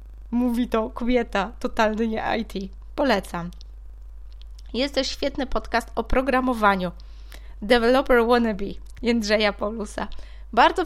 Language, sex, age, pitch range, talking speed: Polish, female, 20-39, 215-265 Hz, 95 wpm